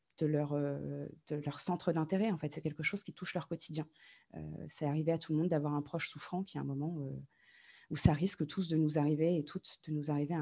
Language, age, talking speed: French, 20-39, 250 wpm